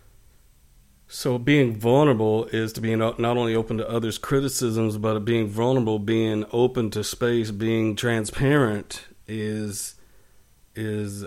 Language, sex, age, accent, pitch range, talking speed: English, male, 50-69, American, 100-115 Hz, 120 wpm